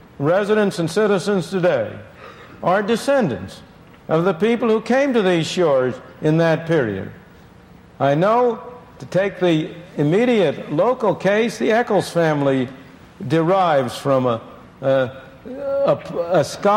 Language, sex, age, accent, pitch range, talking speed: English, male, 60-79, American, 165-225 Hz, 115 wpm